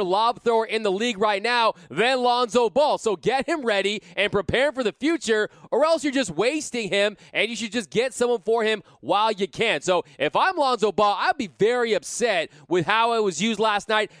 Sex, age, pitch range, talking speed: male, 20-39, 195-235 Hz, 220 wpm